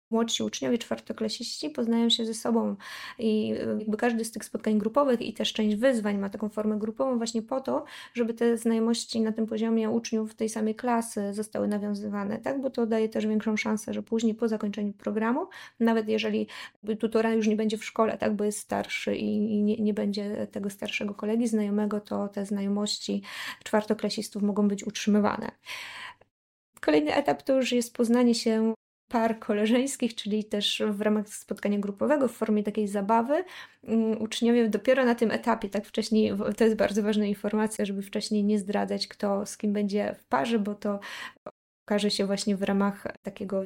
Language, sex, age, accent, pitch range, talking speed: Polish, female, 20-39, native, 210-230 Hz, 170 wpm